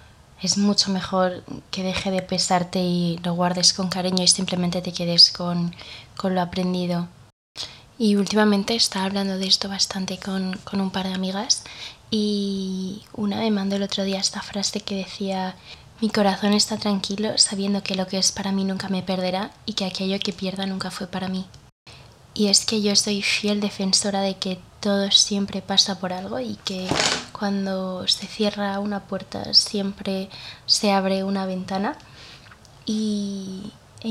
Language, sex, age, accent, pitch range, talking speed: Spanish, female, 20-39, Spanish, 185-200 Hz, 165 wpm